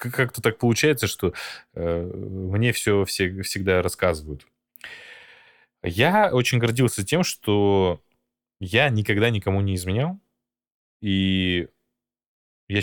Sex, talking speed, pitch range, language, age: male, 105 wpm, 90-115 Hz, Russian, 20-39